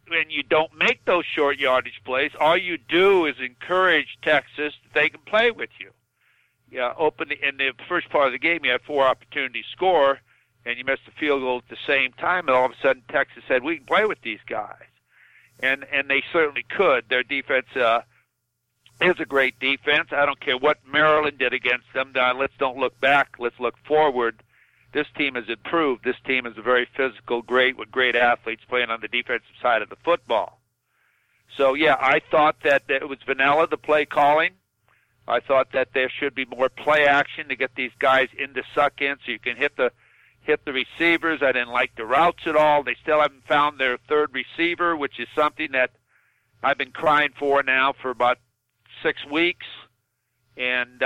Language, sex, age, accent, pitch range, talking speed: English, male, 60-79, American, 125-150 Hz, 205 wpm